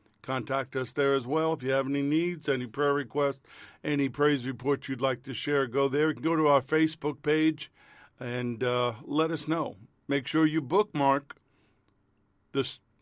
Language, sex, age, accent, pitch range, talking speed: English, male, 50-69, American, 130-150 Hz, 170 wpm